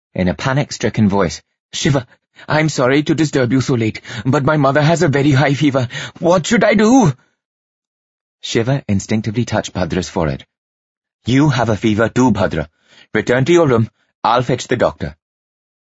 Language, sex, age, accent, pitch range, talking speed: English, male, 30-49, British, 95-135 Hz, 160 wpm